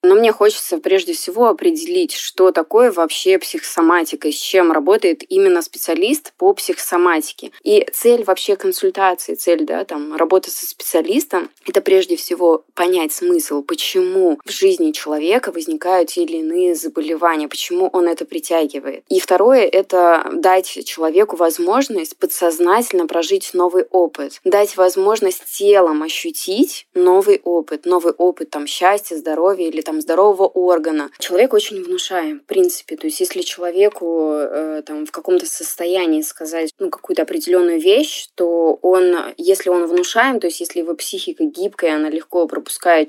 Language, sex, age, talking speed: Russian, female, 20-39, 140 wpm